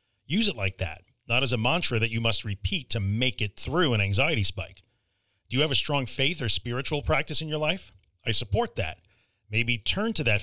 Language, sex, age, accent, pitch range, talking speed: English, male, 40-59, American, 100-130 Hz, 220 wpm